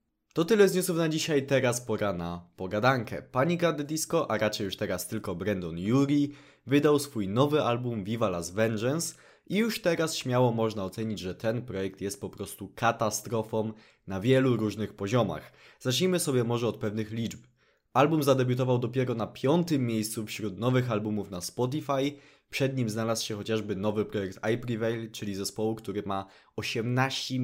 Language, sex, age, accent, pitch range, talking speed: Polish, male, 20-39, native, 110-140 Hz, 165 wpm